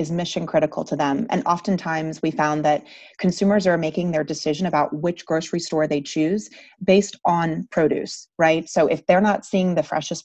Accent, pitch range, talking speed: American, 155-180 Hz, 185 wpm